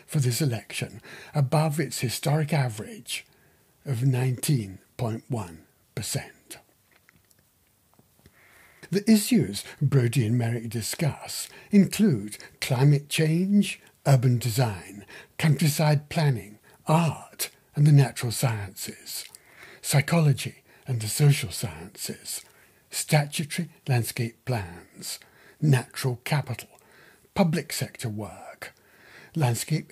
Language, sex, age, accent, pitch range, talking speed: English, male, 60-79, British, 120-155 Hz, 80 wpm